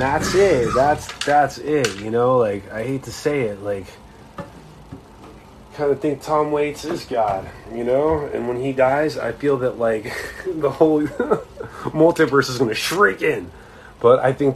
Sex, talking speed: male, 170 wpm